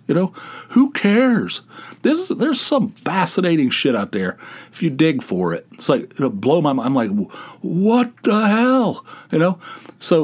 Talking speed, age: 180 wpm, 40-59